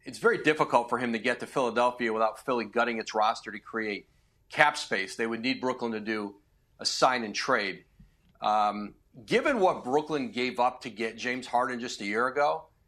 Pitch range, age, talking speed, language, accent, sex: 115-140 Hz, 40-59, 180 wpm, English, American, male